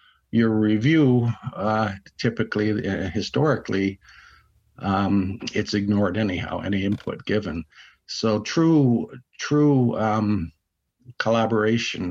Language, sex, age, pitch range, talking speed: English, male, 50-69, 95-115 Hz, 90 wpm